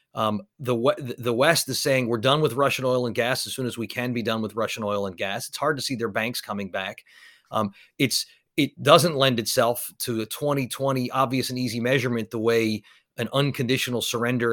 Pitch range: 115-150 Hz